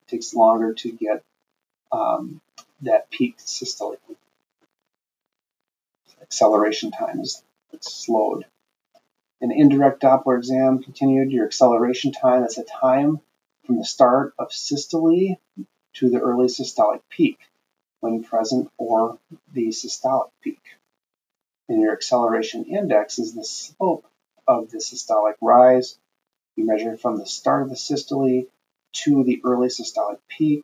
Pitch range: 120-180 Hz